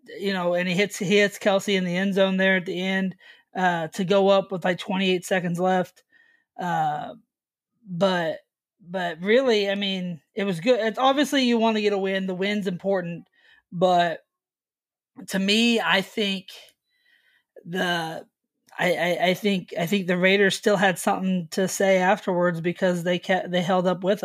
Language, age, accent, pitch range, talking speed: English, 20-39, American, 180-215 Hz, 180 wpm